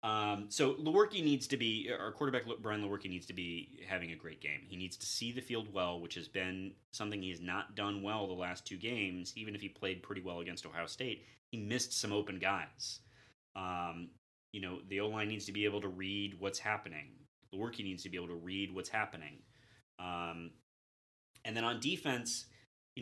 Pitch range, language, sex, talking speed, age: 90-115 Hz, English, male, 205 wpm, 30-49